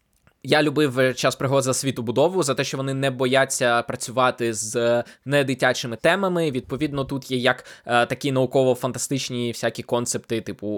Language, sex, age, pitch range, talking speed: Ukrainian, male, 20-39, 125-145 Hz, 150 wpm